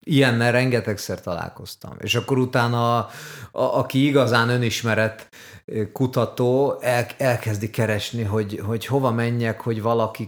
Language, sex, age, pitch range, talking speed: Hungarian, male, 30-49, 110-130 Hz, 125 wpm